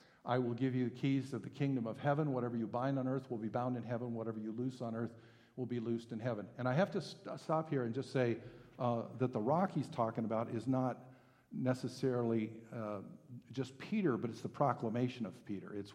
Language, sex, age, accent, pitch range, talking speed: English, male, 50-69, American, 110-135 Hz, 225 wpm